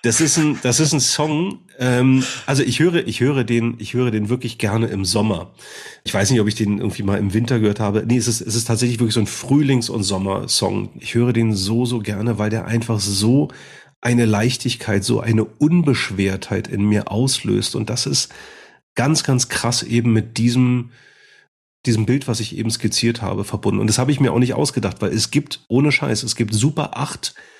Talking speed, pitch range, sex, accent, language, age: 210 wpm, 110-130 Hz, male, German, German, 40-59